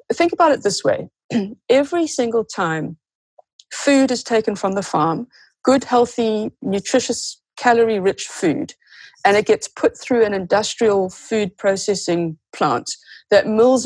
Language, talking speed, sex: English, 135 wpm, female